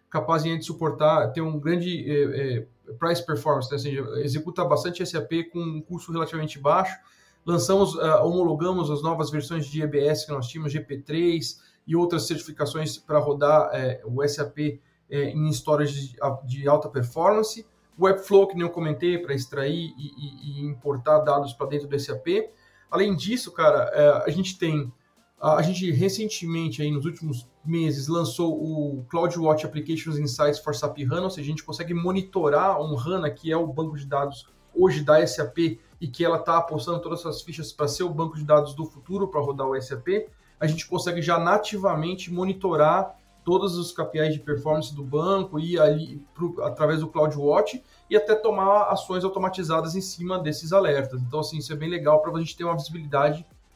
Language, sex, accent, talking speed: Portuguese, male, Brazilian, 180 wpm